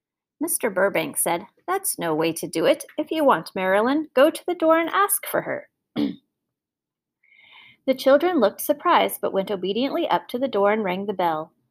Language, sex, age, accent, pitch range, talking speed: English, female, 30-49, American, 195-290 Hz, 185 wpm